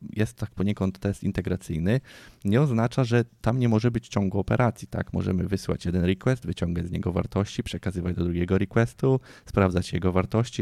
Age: 20-39